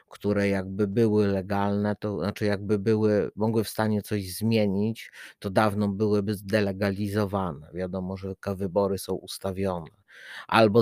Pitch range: 95-105 Hz